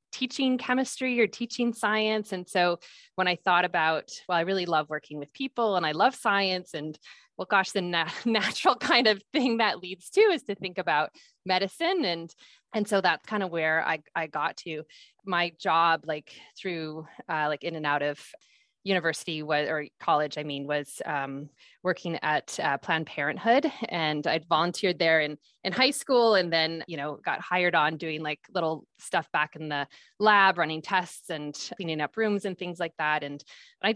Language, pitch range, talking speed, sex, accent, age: English, 160-215 Hz, 190 wpm, female, American, 20-39